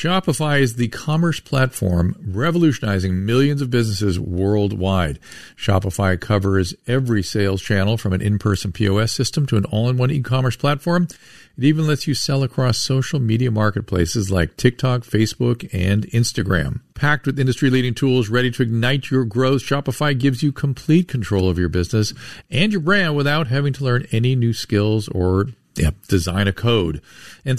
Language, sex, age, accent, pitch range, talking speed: English, male, 50-69, American, 105-135 Hz, 155 wpm